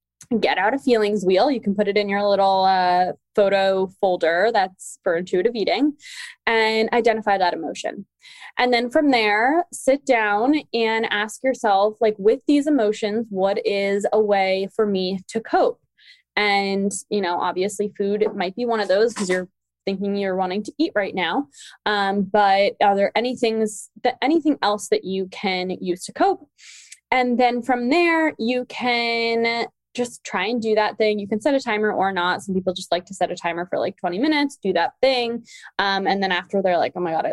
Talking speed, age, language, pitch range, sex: 195 wpm, 20-39, English, 185-230 Hz, female